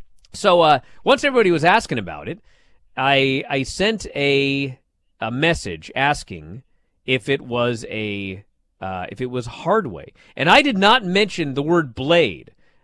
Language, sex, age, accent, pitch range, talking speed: English, male, 40-59, American, 130-195 Hz, 155 wpm